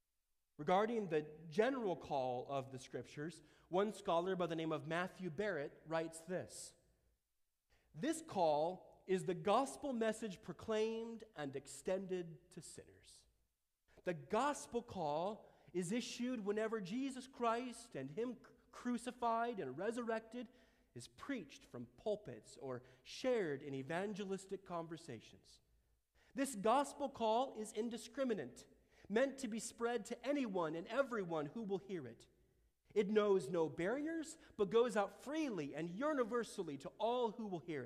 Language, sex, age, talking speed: English, male, 40-59, 130 wpm